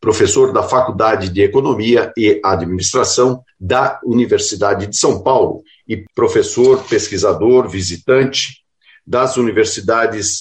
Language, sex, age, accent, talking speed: Portuguese, male, 50-69, Brazilian, 105 wpm